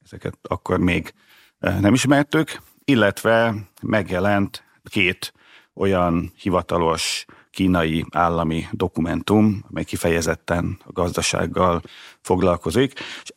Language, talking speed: Hungarian, 85 wpm